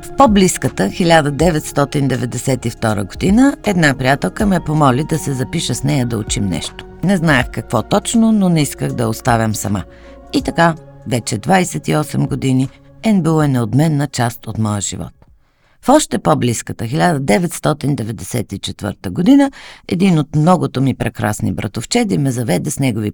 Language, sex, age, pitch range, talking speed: Bulgarian, female, 50-69, 110-170 Hz, 135 wpm